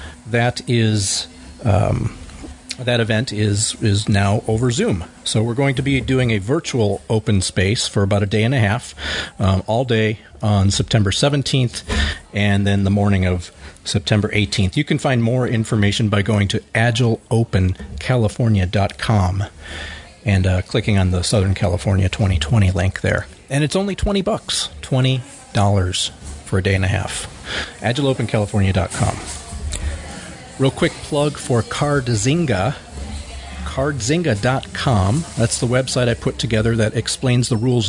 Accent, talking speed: American, 140 wpm